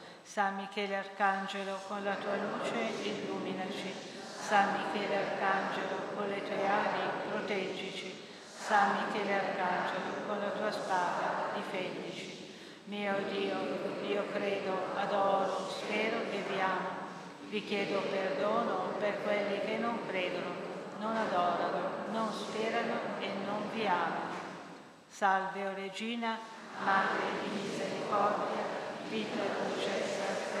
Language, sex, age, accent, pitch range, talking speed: Italian, female, 50-69, native, 190-200 Hz, 115 wpm